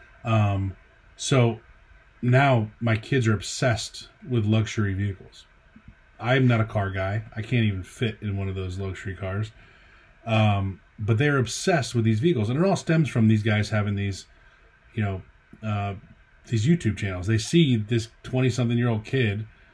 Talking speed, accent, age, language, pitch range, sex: 165 wpm, American, 30-49, English, 105-120 Hz, male